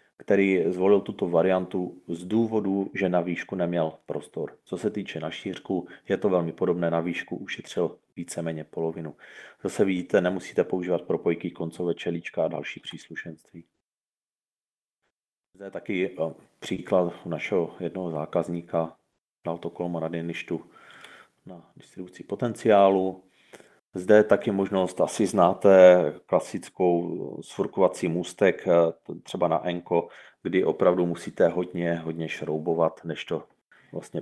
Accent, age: native, 30-49